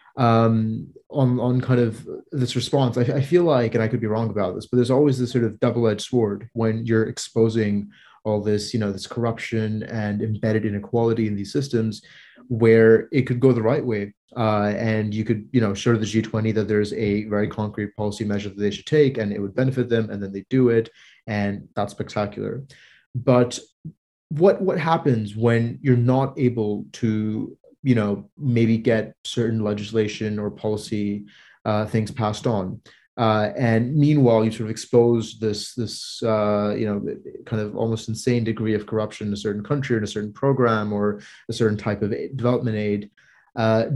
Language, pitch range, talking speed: English, 105-120 Hz, 190 wpm